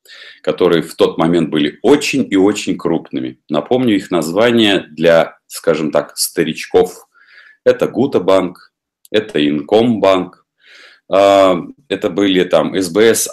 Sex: male